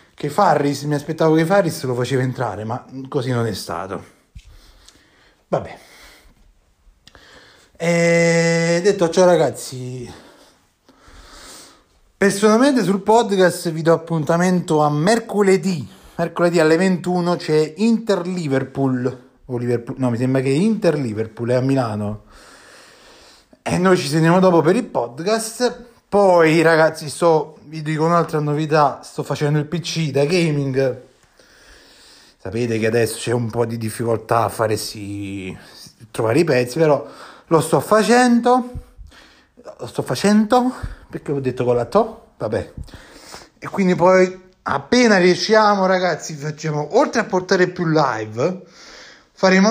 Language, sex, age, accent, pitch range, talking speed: Italian, male, 30-49, native, 130-190 Hz, 130 wpm